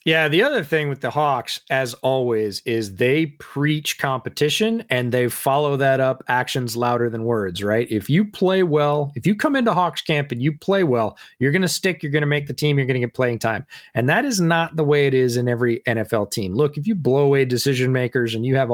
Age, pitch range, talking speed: 30-49, 120-145 Hz, 240 wpm